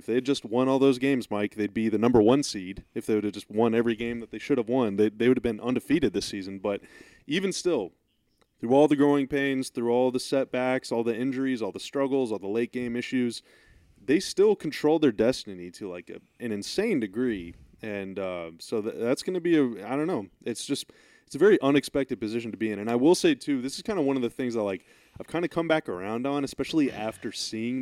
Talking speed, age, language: 245 wpm, 20-39, English